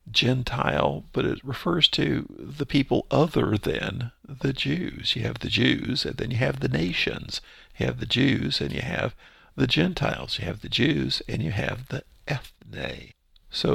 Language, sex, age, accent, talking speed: English, male, 50-69, American, 175 wpm